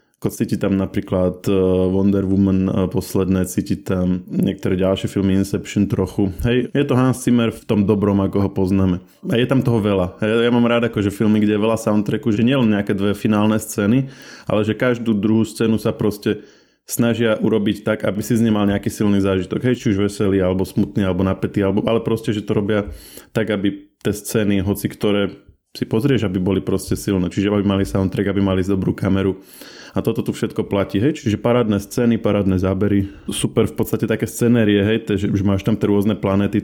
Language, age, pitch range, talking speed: Slovak, 20-39, 100-115 Hz, 195 wpm